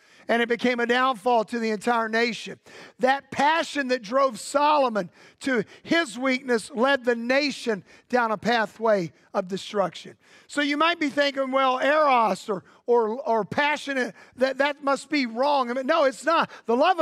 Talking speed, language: 170 wpm, English